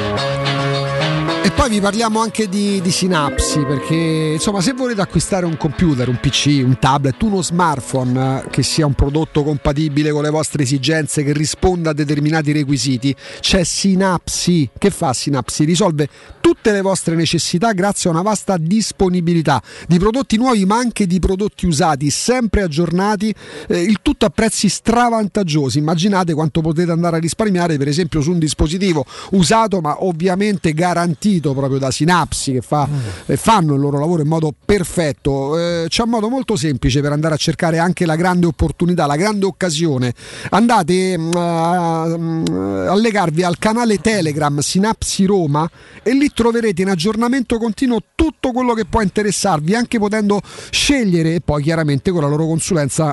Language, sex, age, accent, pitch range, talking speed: Italian, male, 40-59, native, 150-200 Hz, 160 wpm